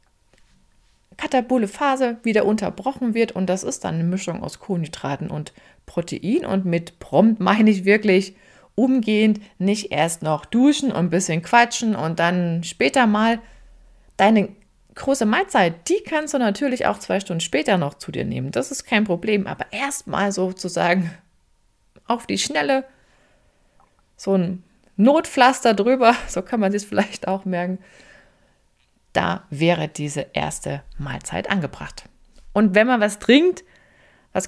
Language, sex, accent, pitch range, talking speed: German, female, German, 175-245 Hz, 145 wpm